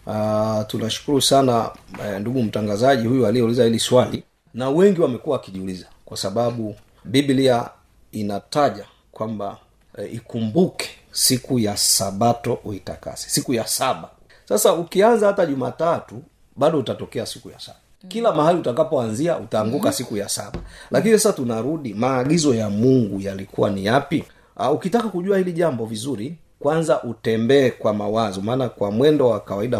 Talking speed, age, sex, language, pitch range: 135 wpm, 40-59, male, Swahili, 105-135 Hz